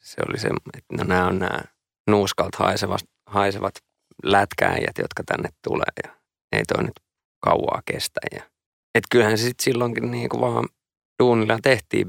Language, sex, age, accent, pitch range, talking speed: Finnish, male, 20-39, native, 100-110 Hz, 150 wpm